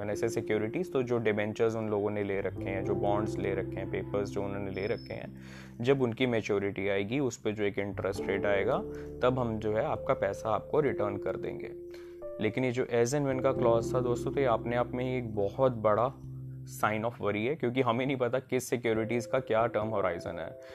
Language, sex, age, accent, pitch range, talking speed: Hindi, male, 20-39, native, 110-125 Hz, 225 wpm